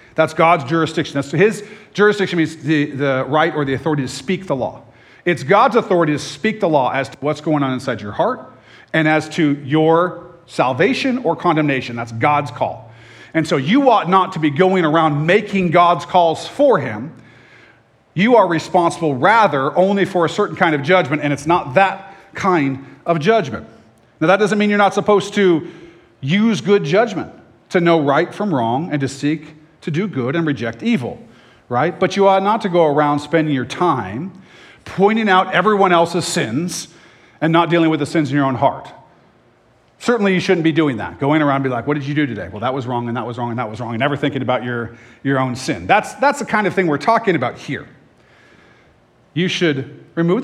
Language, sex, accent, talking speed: English, male, American, 205 wpm